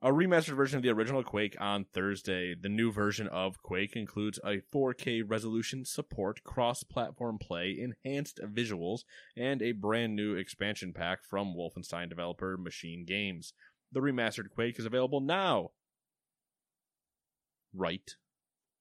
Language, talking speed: English, 130 wpm